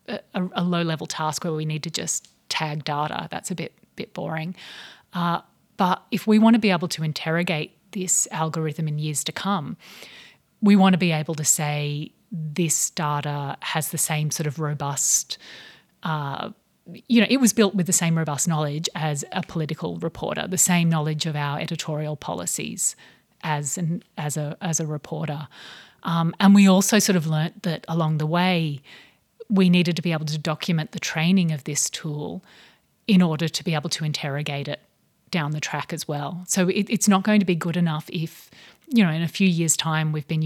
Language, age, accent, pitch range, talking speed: English, 30-49, Australian, 150-180 Hz, 195 wpm